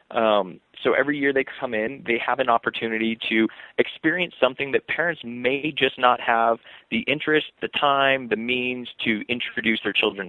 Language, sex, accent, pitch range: English, male, American, 110-135 Hz